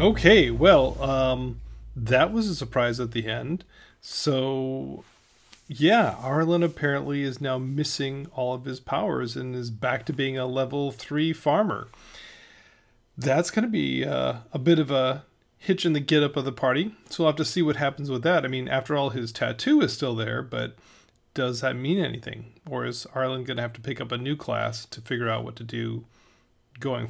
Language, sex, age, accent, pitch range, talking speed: English, male, 40-59, American, 130-170 Hz, 195 wpm